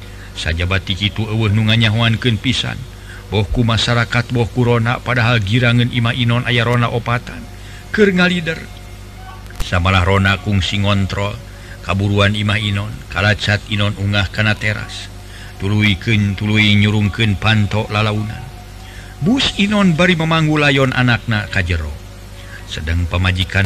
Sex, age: male, 50-69